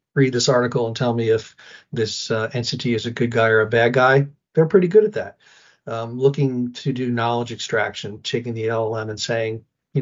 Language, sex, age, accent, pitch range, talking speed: English, male, 50-69, American, 115-135 Hz, 210 wpm